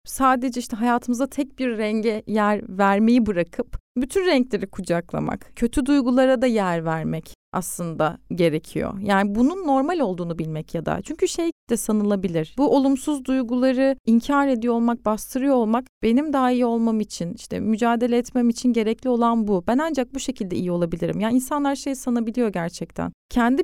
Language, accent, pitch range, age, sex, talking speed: Turkish, native, 210-270 Hz, 30-49, female, 155 wpm